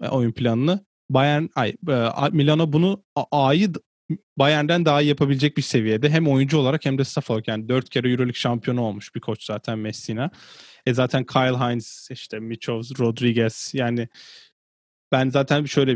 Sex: male